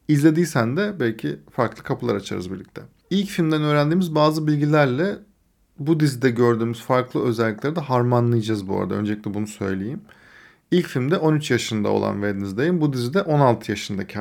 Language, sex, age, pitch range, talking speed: Turkish, male, 40-59, 115-150 Hz, 145 wpm